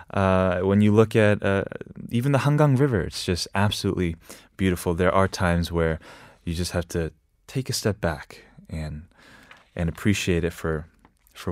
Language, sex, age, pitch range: Korean, male, 20-39, 90-130 Hz